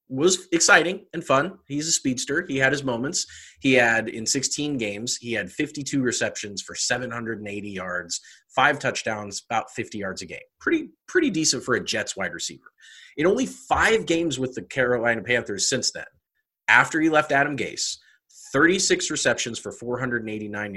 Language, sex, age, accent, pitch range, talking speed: English, male, 30-49, American, 110-150 Hz, 165 wpm